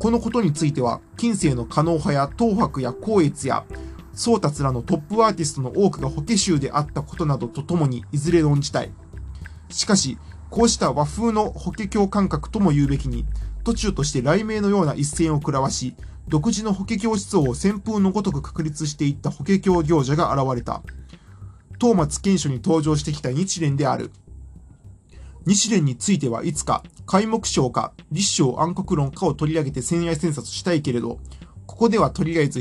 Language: Japanese